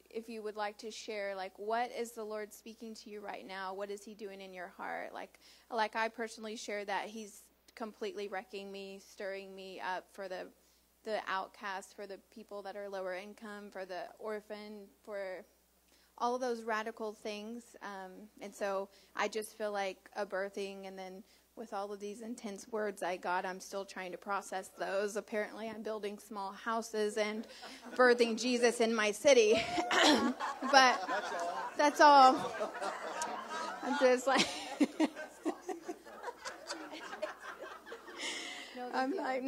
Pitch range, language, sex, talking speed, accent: 200-250 Hz, English, female, 150 wpm, American